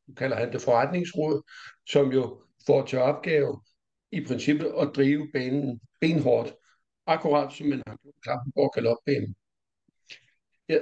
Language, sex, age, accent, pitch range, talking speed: Danish, male, 60-79, native, 125-150 Hz, 120 wpm